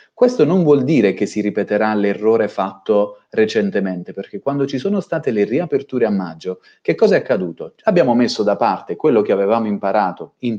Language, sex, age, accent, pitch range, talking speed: Italian, male, 30-49, native, 100-150 Hz, 180 wpm